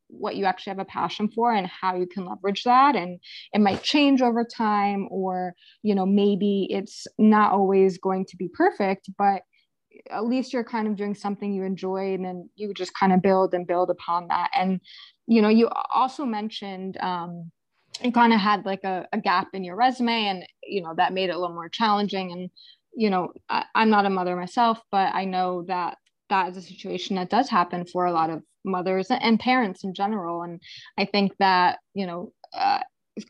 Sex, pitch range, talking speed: female, 185-215 Hz, 205 wpm